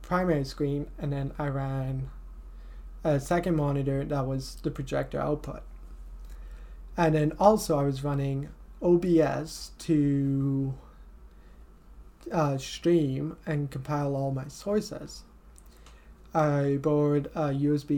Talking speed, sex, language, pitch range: 110 wpm, male, English, 135-155 Hz